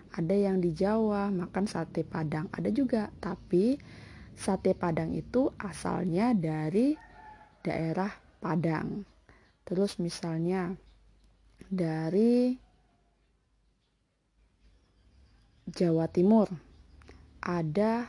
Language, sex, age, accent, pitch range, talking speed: Indonesian, female, 20-39, native, 165-215 Hz, 75 wpm